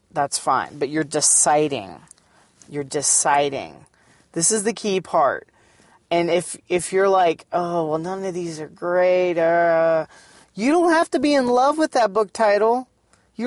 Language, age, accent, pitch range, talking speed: English, 30-49, American, 160-215 Hz, 165 wpm